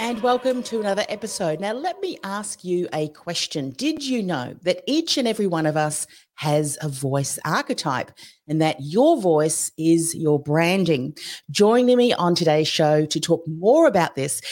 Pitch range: 155-210 Hz